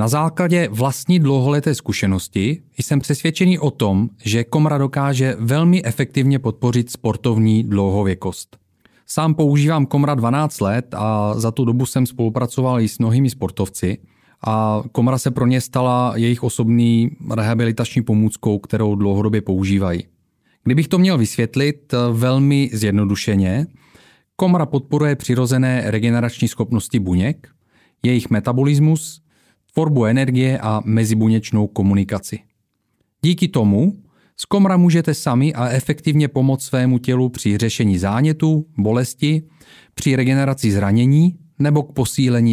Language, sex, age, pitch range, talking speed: Czech, male, 30-49, 110-145 Hz, 120 wpm